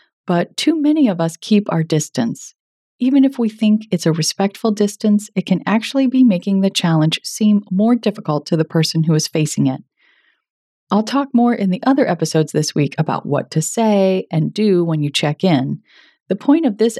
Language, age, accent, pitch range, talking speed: English, 30-49, American, 160-220 Hz, 200 wpm